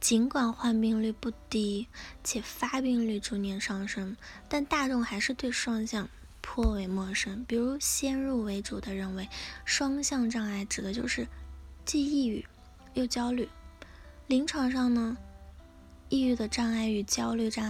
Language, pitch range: Chinese, 210-250 Hz